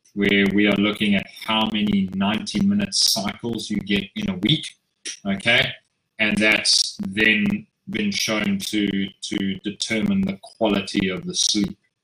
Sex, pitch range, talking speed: male, 100-125 Hz, 145 wpm